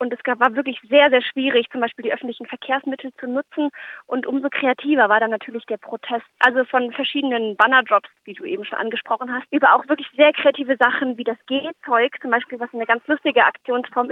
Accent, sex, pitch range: German, female, 225-265 Hz